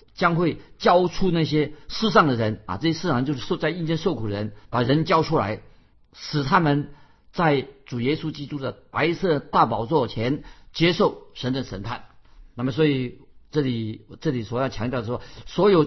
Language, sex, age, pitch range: Chinese, male, 50-69, 115-155 Hz